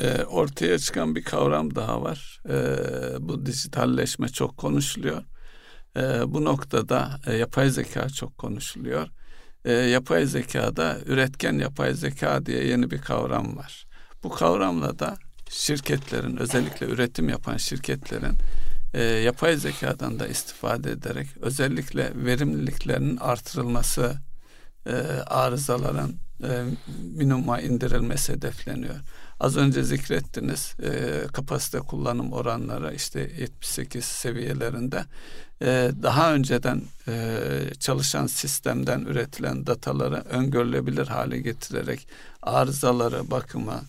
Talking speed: 95 wpm